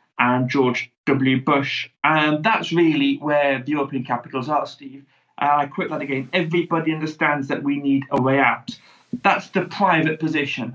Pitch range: 135-165 Hz